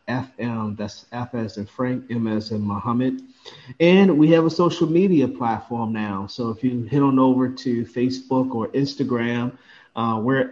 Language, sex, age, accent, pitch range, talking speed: English, male, 30-49, American, 115-135 Hz, 170 wpm